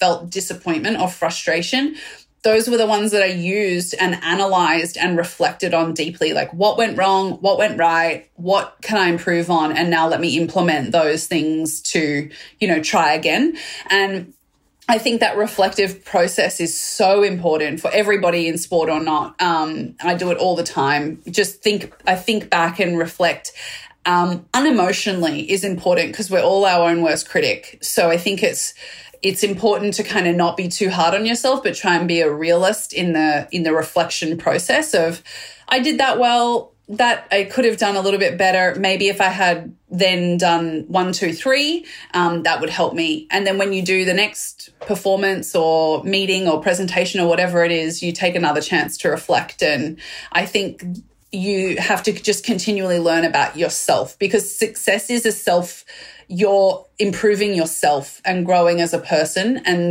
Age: 30-49